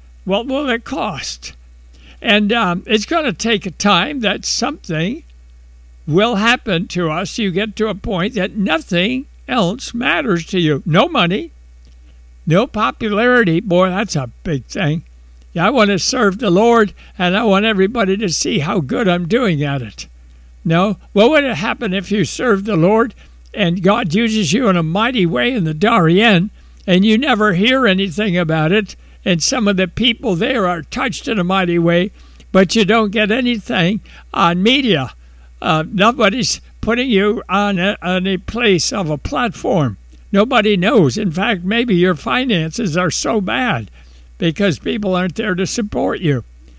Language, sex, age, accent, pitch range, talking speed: English, male, 60-79, American, 155-215 Hz, 165 wpm